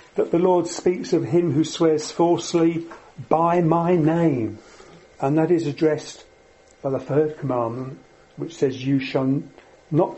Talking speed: 140 wpm